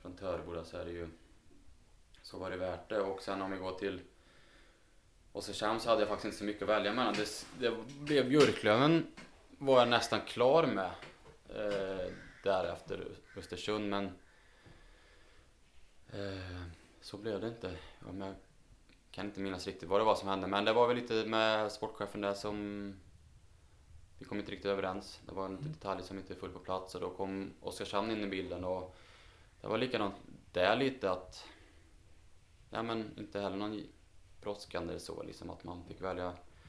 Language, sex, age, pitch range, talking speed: Swedish, male, 20-39, 90-105 Hz, 175 wpm